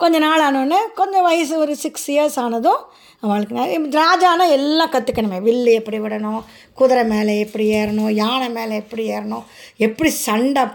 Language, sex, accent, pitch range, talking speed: Tamil, female, native, 225-320 Hz, 145 wpm